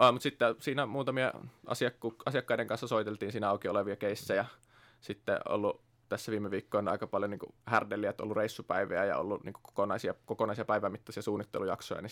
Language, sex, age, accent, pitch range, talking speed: Finnish, male, 20-39, native, 100-120 Hz, 155 wpm